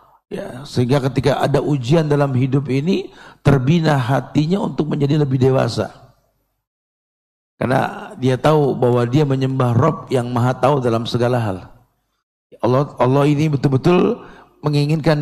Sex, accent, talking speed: male, native, 125 wpm